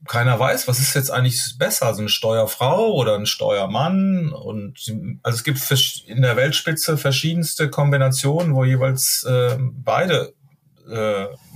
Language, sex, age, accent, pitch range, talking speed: German, male, 30-49, German, 110-140 Hz, 140 wpm